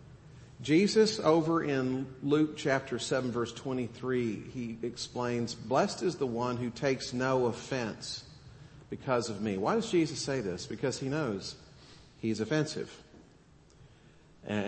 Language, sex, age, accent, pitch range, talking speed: English, male, 50-69, American, 110-140 Hz, 130 wpm